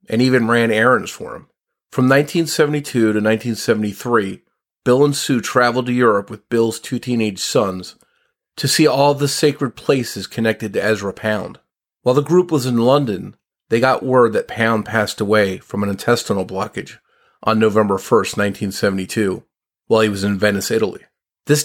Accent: American